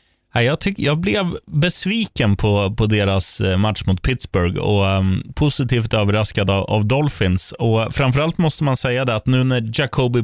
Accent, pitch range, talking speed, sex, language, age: native, 100-135 Hz, 160 wpm, male, Swedish, 20-39